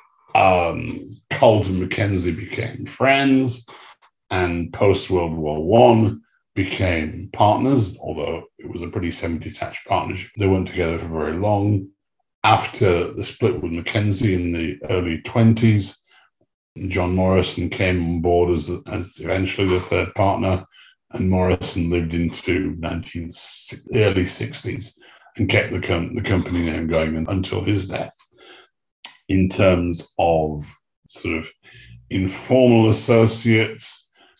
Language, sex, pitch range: English, male, 90-110 Hz